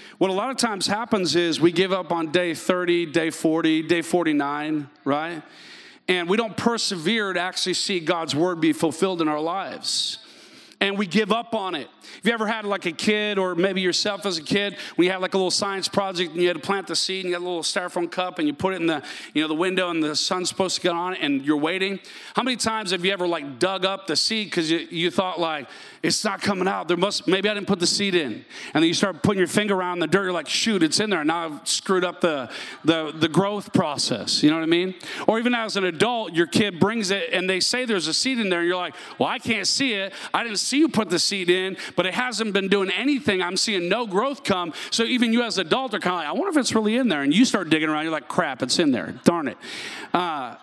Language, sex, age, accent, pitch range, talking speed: English, male, 40-59, American, 175-210 Hz, 270 wpm